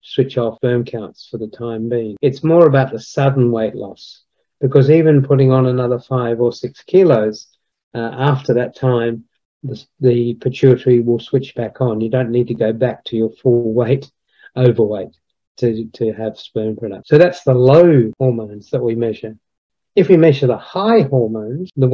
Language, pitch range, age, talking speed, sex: English, 115-140 Hz, 50-69, 180 wpm, male